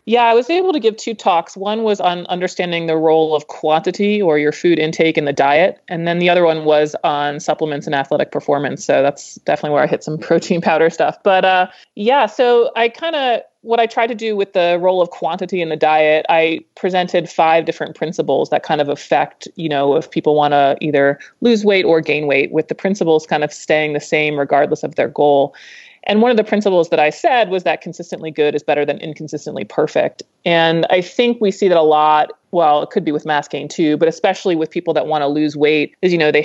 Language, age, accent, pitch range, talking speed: English, 30-49, American, 150-180 Hz, 235 wpm